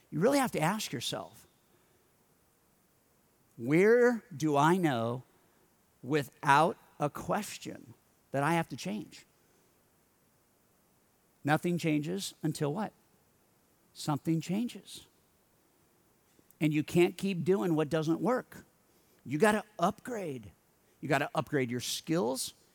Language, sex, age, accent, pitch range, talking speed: English, male, 50-69, American, 140-180 Hz, 105 wpm